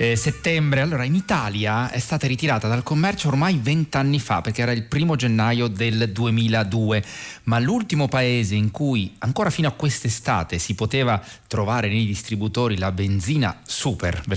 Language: Italian